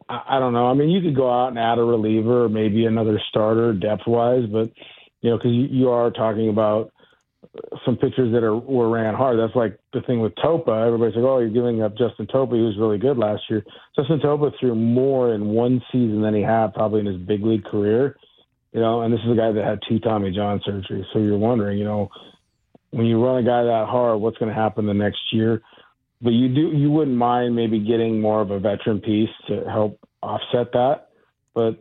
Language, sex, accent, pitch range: English, male, American, 105-120 Hz